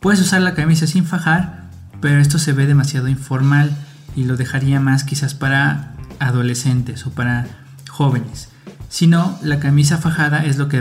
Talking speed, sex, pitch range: 165 wpm, male, 130-160 Hz